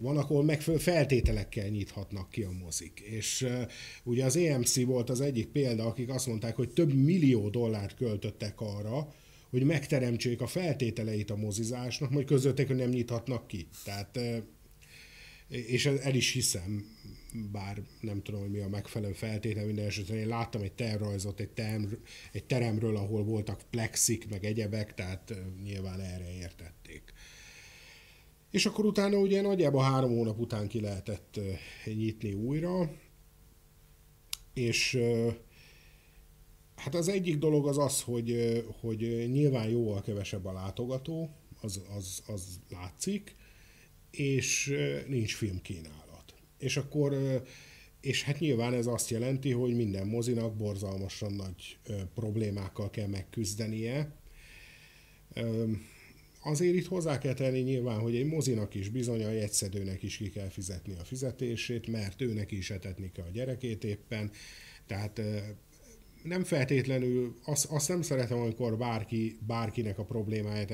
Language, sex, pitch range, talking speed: Hungarian, male, 105-130 Hz, 140 wpm